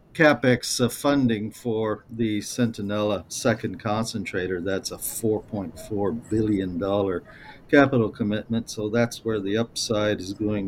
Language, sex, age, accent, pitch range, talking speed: English, male, 50-69, American, 100-125 Hz, 110 wpm